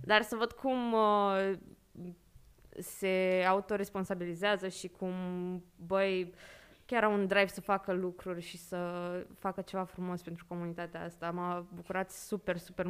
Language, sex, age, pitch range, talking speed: Romanian, female, 20-39, 180-230 Hz, 130 wpm